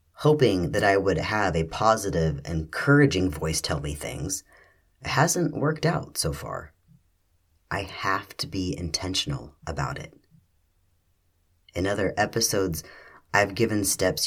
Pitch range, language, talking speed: 85-100 Hz, English, 125 wpm